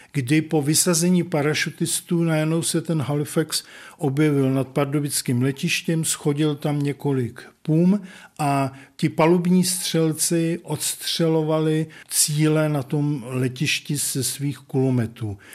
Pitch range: 135-165 Hz